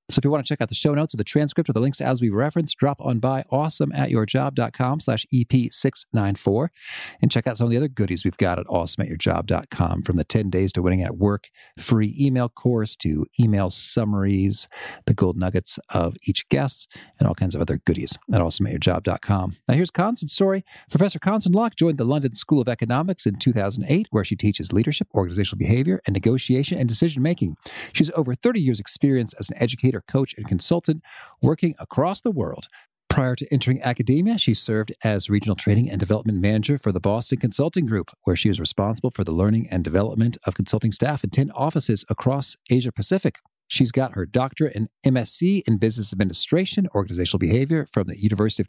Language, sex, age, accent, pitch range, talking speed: English, male, 40-59, American, 105-145 Hz, 195 wpm